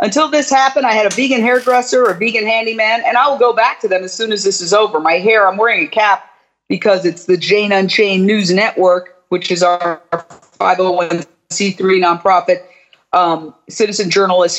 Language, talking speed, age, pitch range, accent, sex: English, 185 wpm, 40-59, 175-220 Hz, American, female